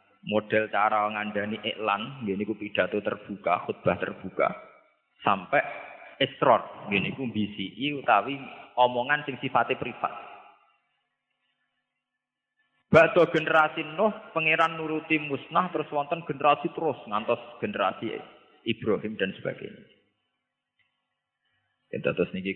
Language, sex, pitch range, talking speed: Malay, male, 105-135 Hz, 100 wpm